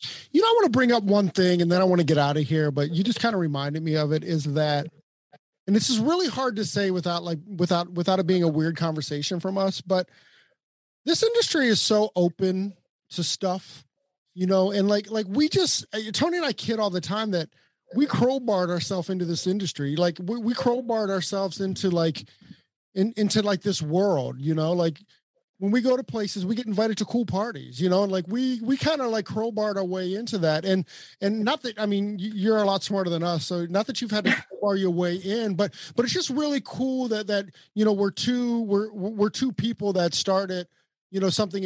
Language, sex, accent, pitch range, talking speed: English, male, American, 175-225 Hz, 230 wpm